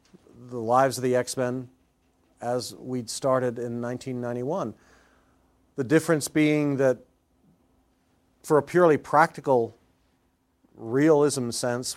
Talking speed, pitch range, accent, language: 100 wpm, 115-135 Hz, American, English